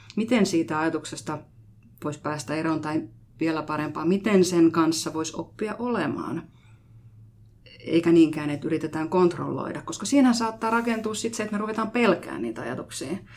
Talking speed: 140 wpm